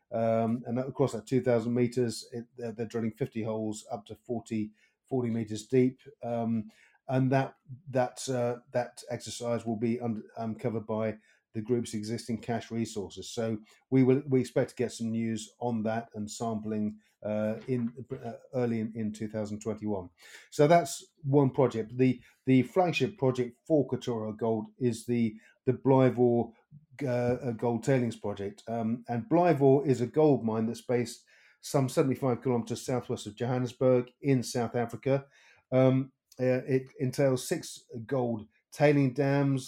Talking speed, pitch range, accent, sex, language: 155 wpm, 110-130 Hz, British, male, English